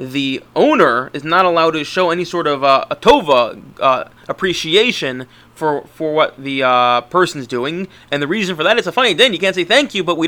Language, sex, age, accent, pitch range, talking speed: English, male, 30-49, American, 145-190 Hz, 230 wpm